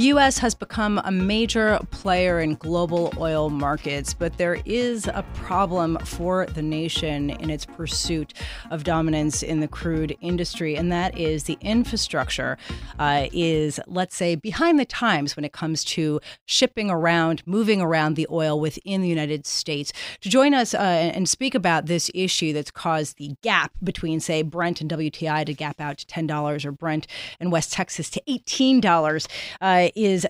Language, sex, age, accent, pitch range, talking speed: English, female, 30-49, American, 155-195 Hz, 165 wpm